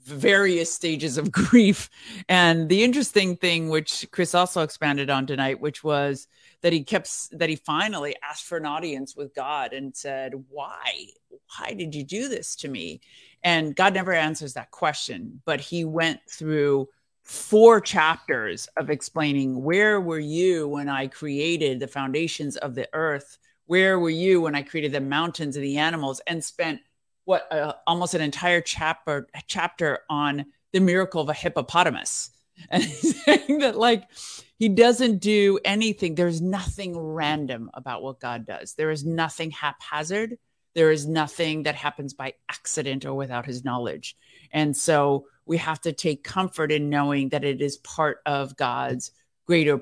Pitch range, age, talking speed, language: 145-180 Hz, 50-69, 165 wpm, English